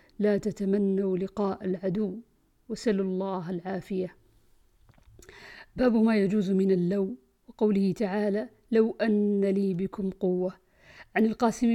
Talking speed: 105 wpm